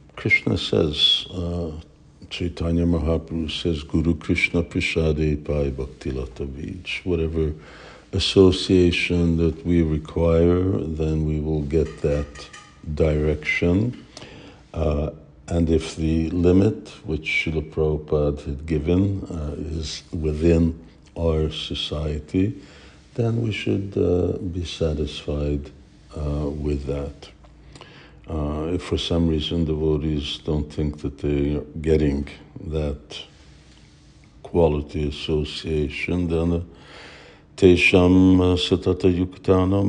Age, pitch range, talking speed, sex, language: 60-79, 75-90 Hz, 95 wpm, male, English